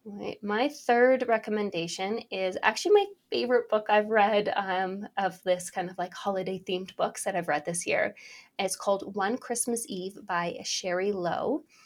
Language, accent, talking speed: English, American, 160 wpm